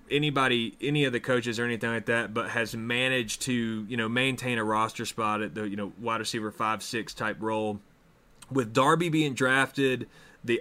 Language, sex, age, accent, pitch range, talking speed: English, male, 30-49, American, 110-130 Hz, 190 wpm